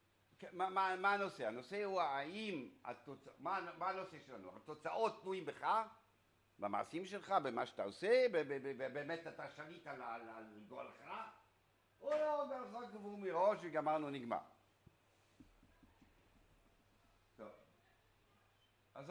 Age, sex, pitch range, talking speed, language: 60-79, male, 110-170 Hz, 100 wpm, Hebrew